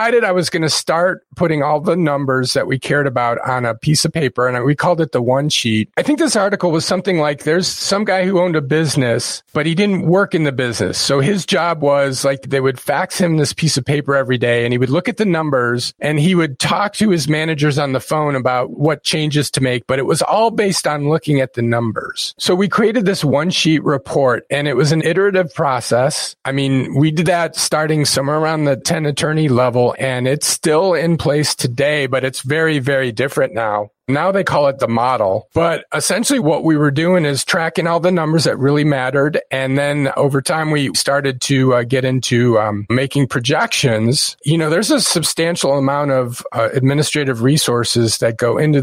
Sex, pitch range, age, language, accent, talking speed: male, 130-170 Hz, 40-59, English, American, 215 wpm